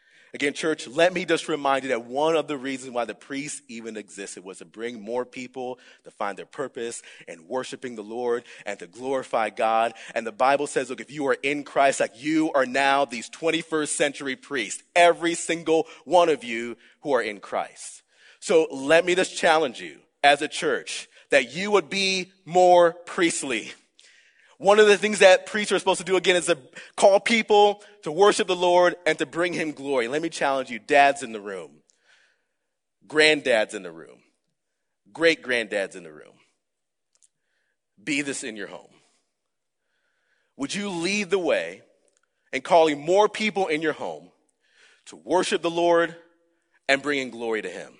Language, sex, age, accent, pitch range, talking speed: English, male, 30-49, American, 135-185 Hz, 180 wpm